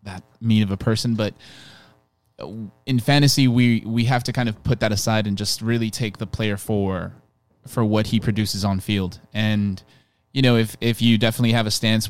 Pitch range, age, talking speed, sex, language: 100-115 Hz, 20-39, 200 wpm, male, English